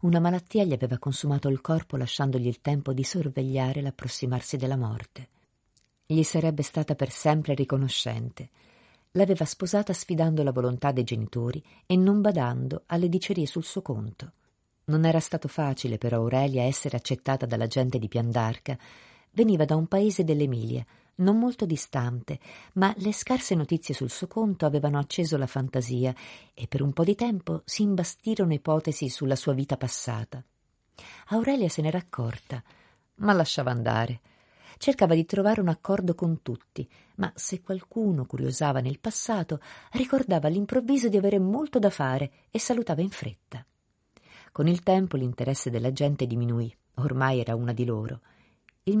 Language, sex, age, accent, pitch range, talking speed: Italian, female, 50-69, native, 130-185 Hz, 150 wpm